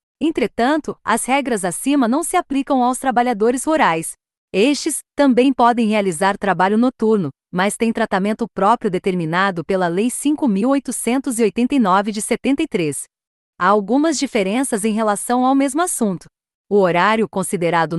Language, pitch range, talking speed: Portuguese, 190-250 Hz, 125 wpm